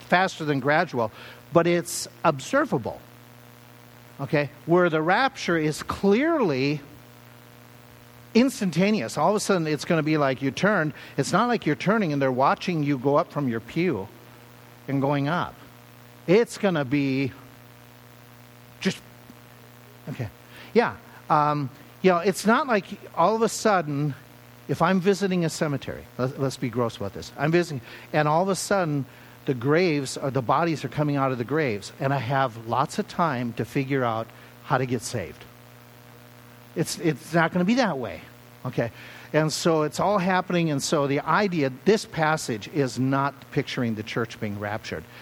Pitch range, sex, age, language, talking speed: 110-170 Hz, male, 50-69, English, 170 wpm